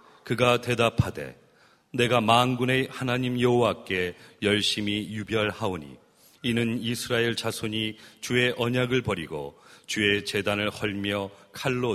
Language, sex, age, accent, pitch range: Korean, male, 40-59, native, 95-120 Hz